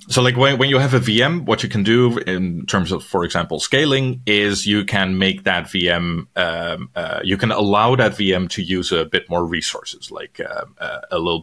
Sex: male